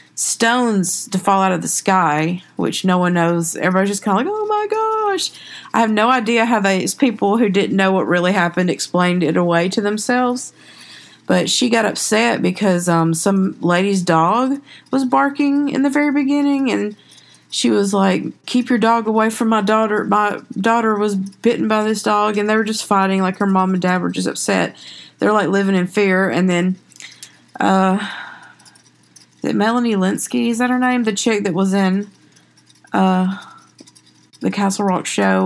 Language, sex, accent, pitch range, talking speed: English, female, American, 165-215 Hz, 180 wpm